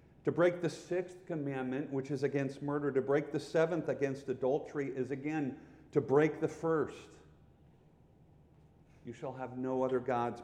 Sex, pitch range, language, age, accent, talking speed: male, 130-165 Hz, English, 50-69, American, 155 wpm